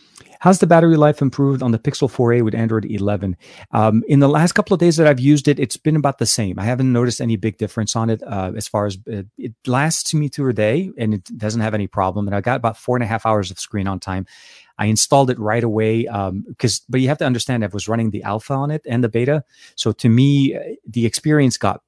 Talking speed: 255 wpm